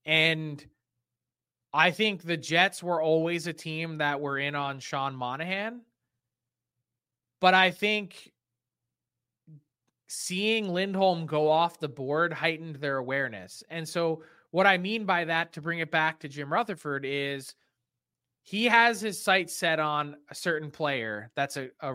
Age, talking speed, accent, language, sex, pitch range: 20-39, 150 wpm, American, English, male, 135-185 Hz